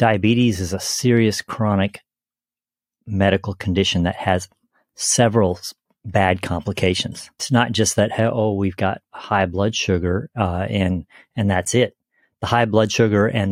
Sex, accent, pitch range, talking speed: male, American, 95-110 Hz, 140 wpm